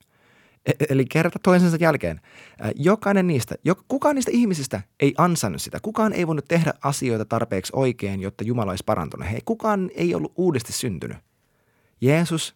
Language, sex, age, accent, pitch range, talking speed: Finnish, male, 30-49, native, 115-165 Hz, 145 wpm